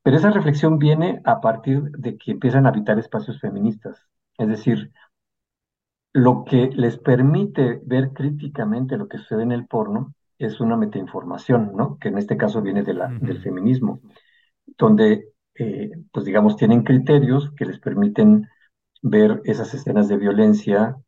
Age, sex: 50-69, male